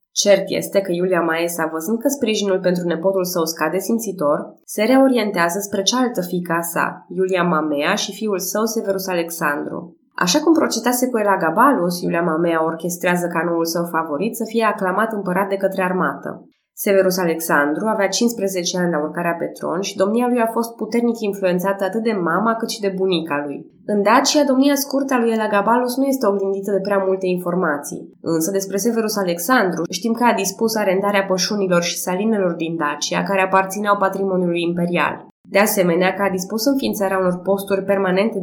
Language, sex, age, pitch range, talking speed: Romanian, female, 20-39, 175-225 Hz, 170 wpm